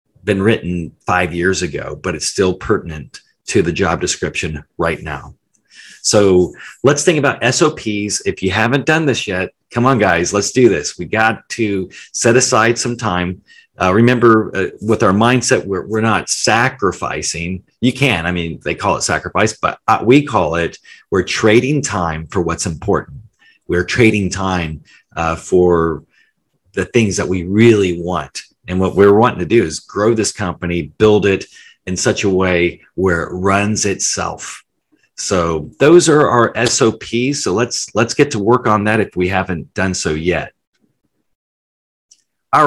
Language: English